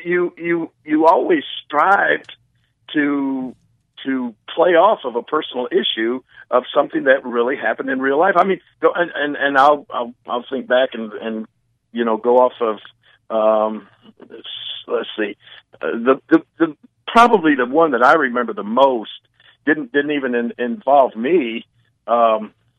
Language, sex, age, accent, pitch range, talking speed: English, male, 50-69, American, 115-140 Hz, 160 wpm